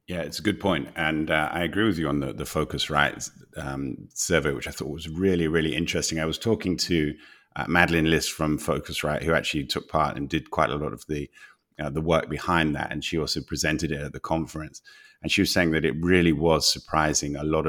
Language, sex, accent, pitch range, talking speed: English, male, British, 75-90 Hz, 235 wpm